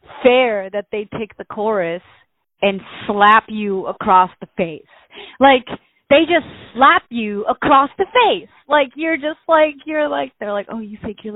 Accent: American